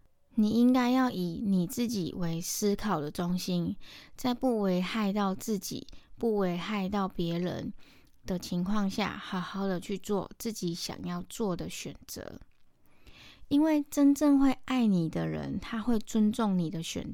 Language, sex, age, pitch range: Chinese, female, 20-39, 180-230 Hz